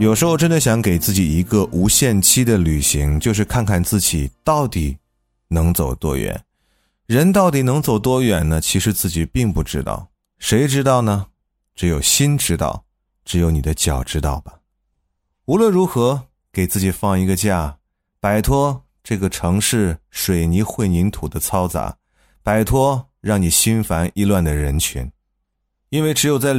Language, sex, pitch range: Chinese, male, 85-125 Hz